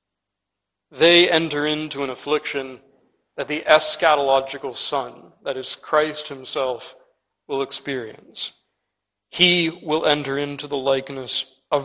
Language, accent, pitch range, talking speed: English, American, 100-145 Hz, 110 wpm